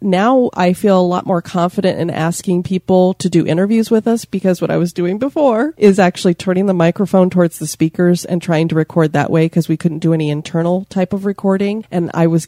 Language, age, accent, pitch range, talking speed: English, 30-49, American, 160-190 Hz, 225 wpm